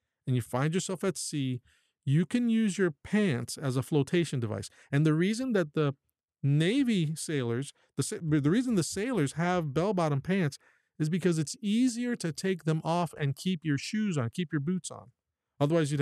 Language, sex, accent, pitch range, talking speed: English, male, American, 135-180 Hz, 185 wpm